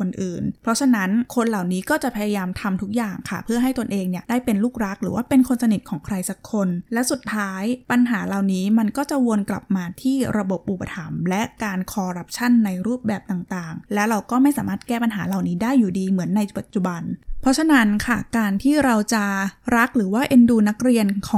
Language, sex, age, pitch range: Thai, female, 20-39, 195-240 Hz